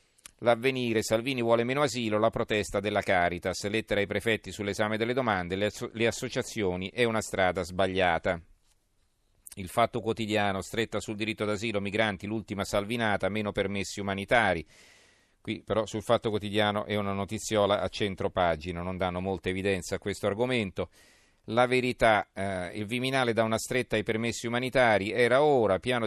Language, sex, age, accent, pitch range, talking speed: Italian, male, 40-59, native, 95-110 Hz, 150 wpm